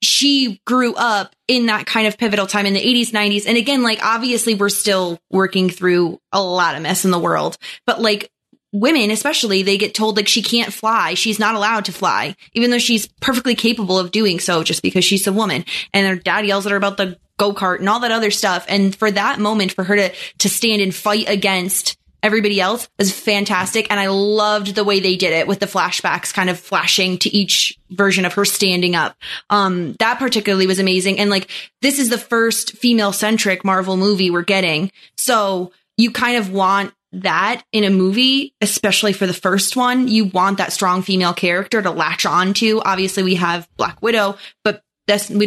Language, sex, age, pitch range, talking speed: English, female, 20-39, 190-220 Hz, 205 wpm